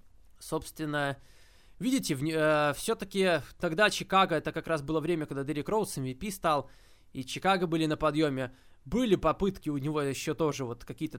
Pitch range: 130-160 Hz